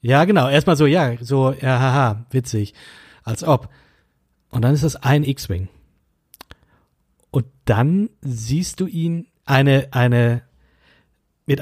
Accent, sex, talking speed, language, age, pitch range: German, male, 130 wpm, German, 40-59, 115-155 Hz